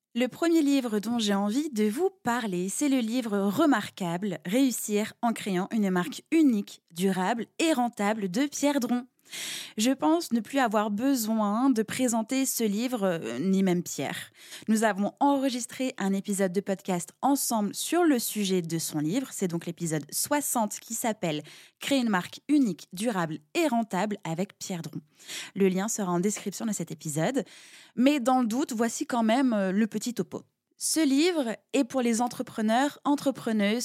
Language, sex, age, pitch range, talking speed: French, female, 20-39, 195-265 Hz, 170 wpm